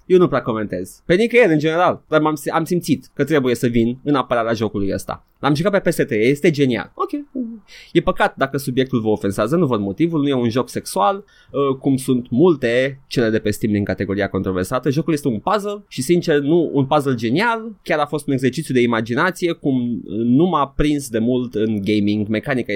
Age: 20-39